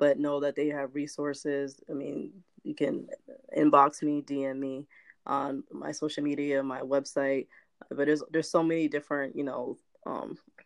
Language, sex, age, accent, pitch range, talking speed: English, female, 20-39, American, 135-150 Hz, 165 wpm